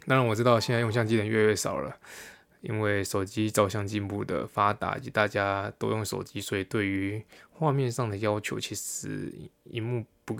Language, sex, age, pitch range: Chinese, male, 20-39, 100-120 Hz